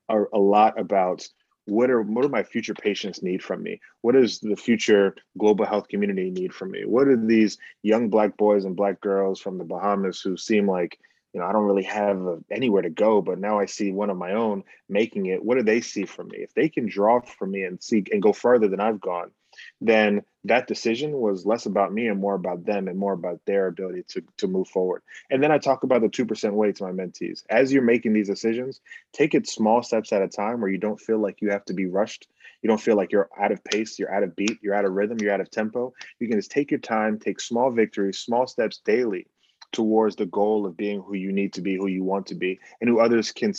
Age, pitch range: 30-49, 95-110 Hz